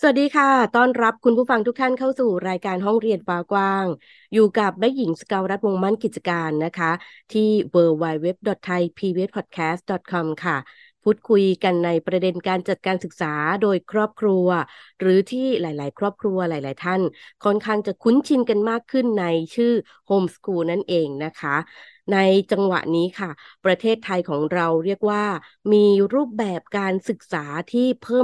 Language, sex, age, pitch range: Thai, female, 20-39, 170-210 Hz